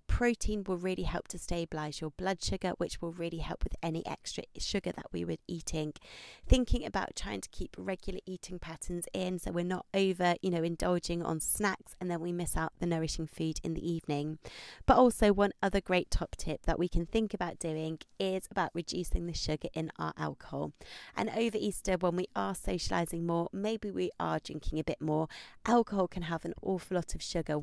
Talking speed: 205 wpm